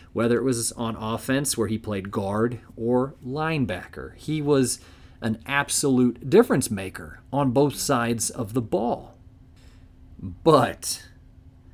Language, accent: English, American